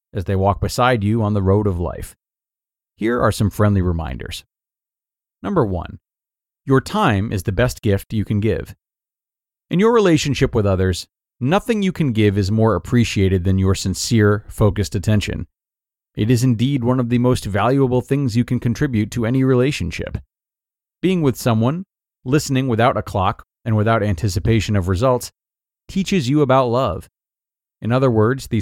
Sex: male